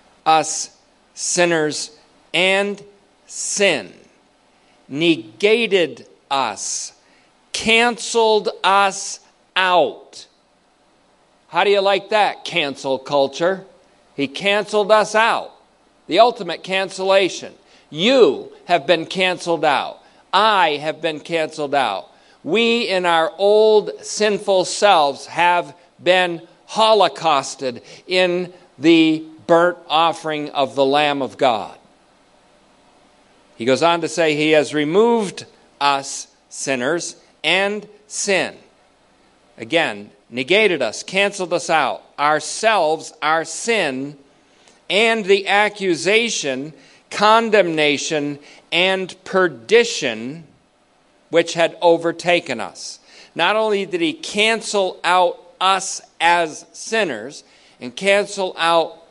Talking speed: 95 wpm